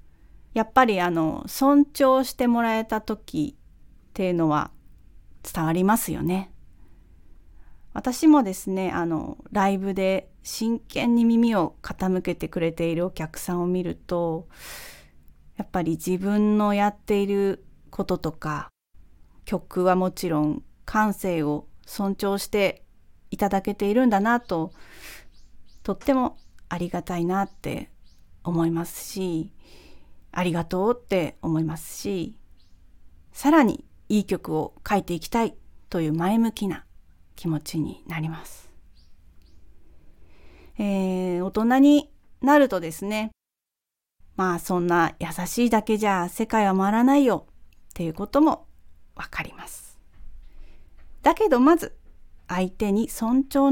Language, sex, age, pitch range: Japanese, female, 30-49, 150-220 Hz